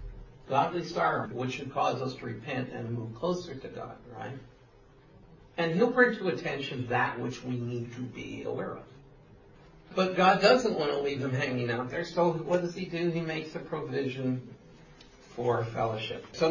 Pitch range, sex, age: 130-185 Hz, male, 60-79